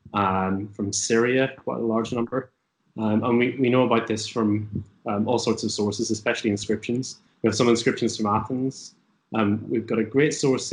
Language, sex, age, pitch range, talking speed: English, male, 20-39, 110-125 Hz, 190 wpm